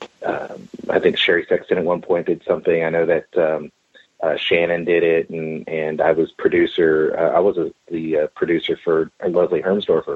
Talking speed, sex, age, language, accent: 195 wpm, male, 30-49, English, American